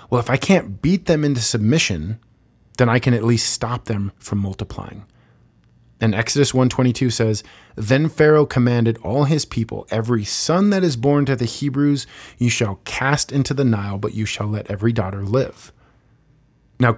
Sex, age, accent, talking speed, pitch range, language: male, 30-49, American, 180 wpm, 110-140 Hz, English